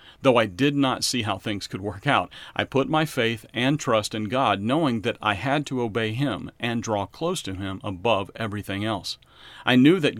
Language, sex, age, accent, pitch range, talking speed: English, male, 40-59, American, 95-130 Hz, 210 wpm